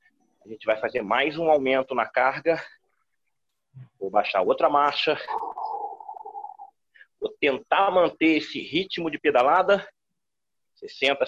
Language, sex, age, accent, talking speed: Portuguese, male, 40-59, Brazilian, 110 wpm